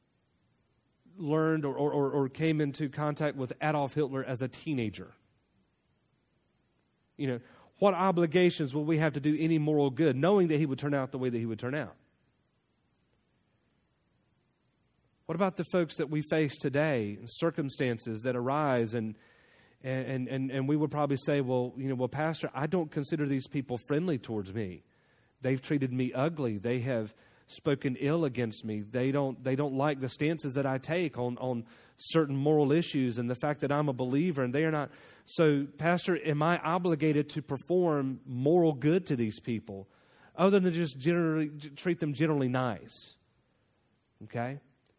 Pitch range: 130-160 Hz